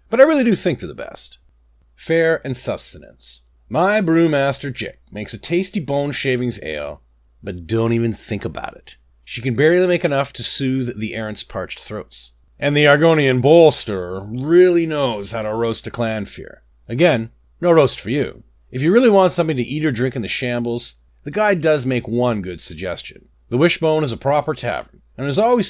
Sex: male